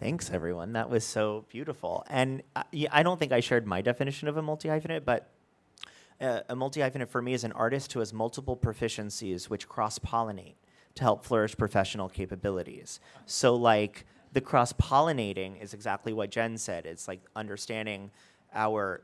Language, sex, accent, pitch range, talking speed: English, male, American, 105-125 Hz, 155 wpm